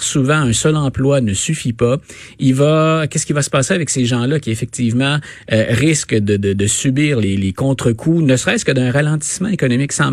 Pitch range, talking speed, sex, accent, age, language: 115-155 Hz, 205 wpm, male, Canadian, 30-49, French